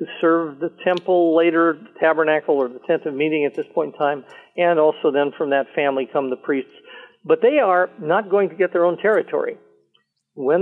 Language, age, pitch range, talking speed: English, 50-69, 145-215 Hz, 210 wpm